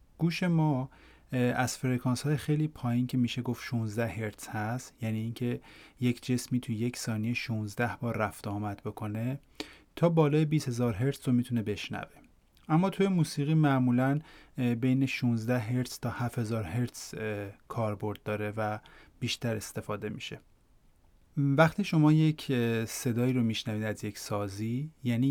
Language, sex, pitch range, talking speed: Persian, male, 110-140 Hz, 140 wpm